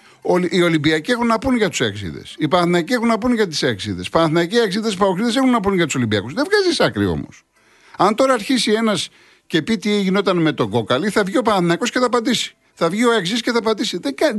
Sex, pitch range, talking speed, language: male, 165-245 Hz, 225 wpm, Greek